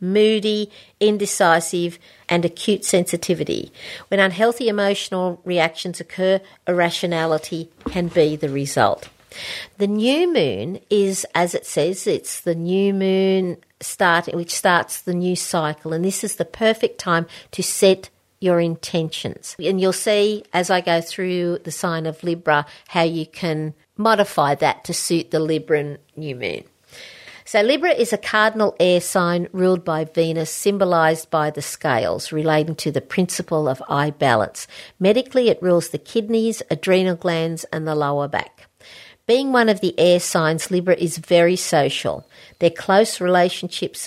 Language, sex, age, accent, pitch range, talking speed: English, female, 50-69, Australian, 165-200 Hz, 150 wpm